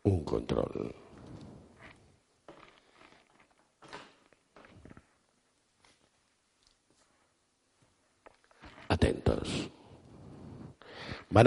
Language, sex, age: Spanish, male, 60-79